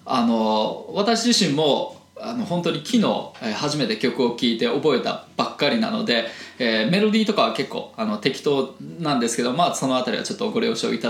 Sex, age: male, 20-39